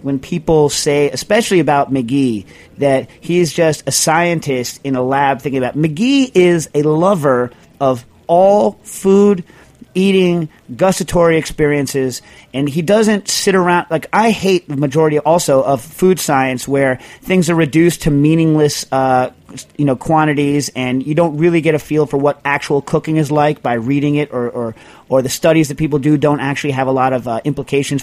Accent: American